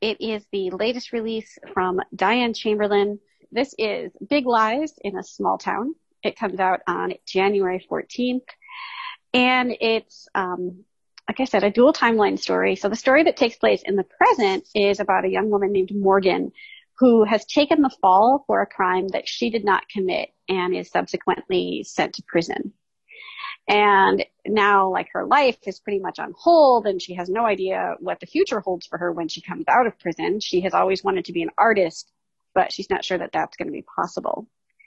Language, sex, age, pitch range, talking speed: English, female, 30-49, 185-295 Hz, 195 wpm